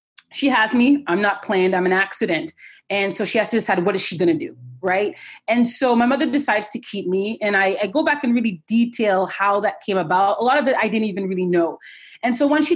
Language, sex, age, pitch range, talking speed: English, female, 30-49, 205-280 Hz, 260 wpm